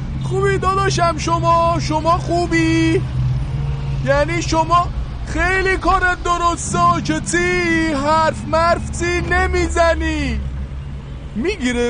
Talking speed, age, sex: 80 wpm, 20-39, male